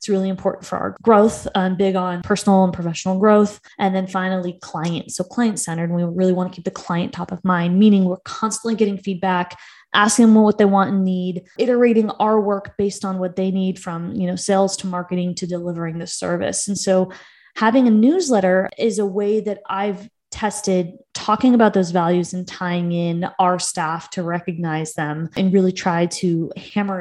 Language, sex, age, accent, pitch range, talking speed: English, female, 20-39, American, 185-225 Hz, 195 wpm